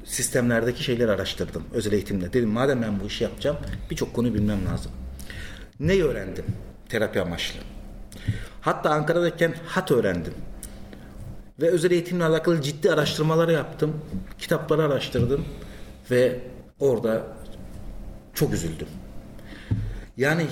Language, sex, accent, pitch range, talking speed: Turkish, male, native, 110-145 Hz, 110 wpm